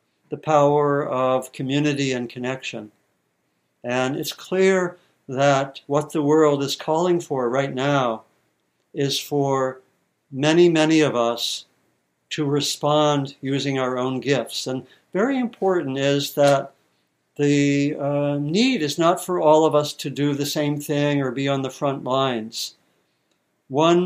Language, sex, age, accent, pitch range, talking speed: English, male, 60-79, American, 135-155 Hz, 140 wpm